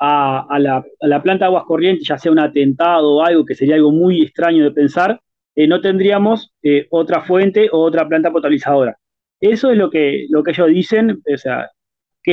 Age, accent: 20-39, Argentinian